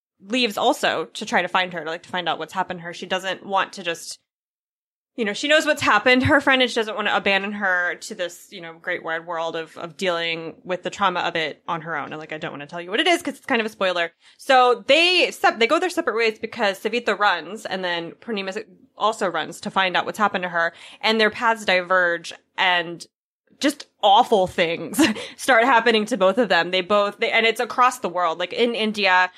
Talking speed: 245 wpm